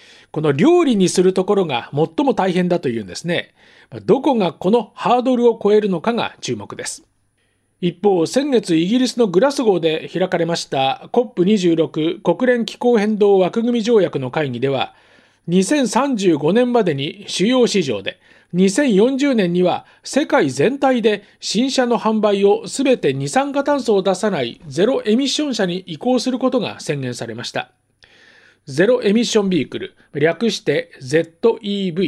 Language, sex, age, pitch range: Japanese, male, 40-59, 170-240 Hz